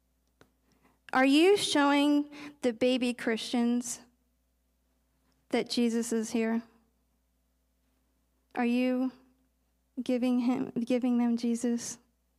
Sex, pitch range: female, 215-280 Hz